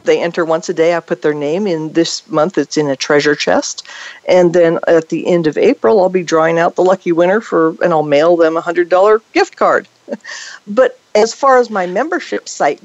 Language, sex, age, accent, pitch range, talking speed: English, female, 50-69, American, 165-235 Hz, 225 wpm